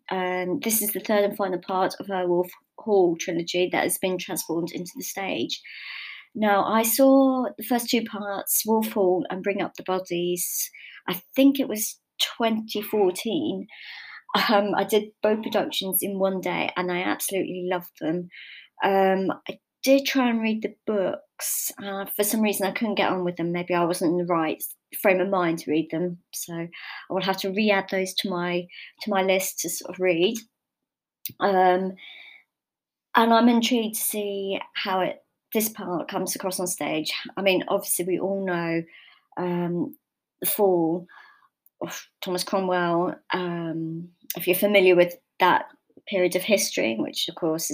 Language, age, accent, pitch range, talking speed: English, 30-49, British, 180-210 Hz, 170 wpm